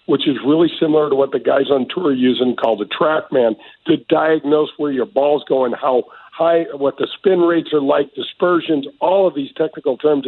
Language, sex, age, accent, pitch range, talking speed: English, male, 50-69, American, 135-185 Hz, 210 wpm